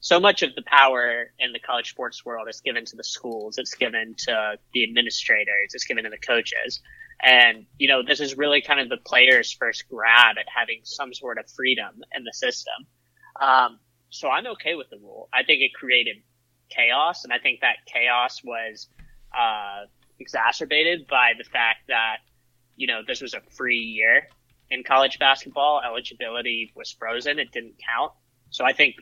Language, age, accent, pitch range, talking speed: English, 20-39, American, 120-140 Hz, 185 wpm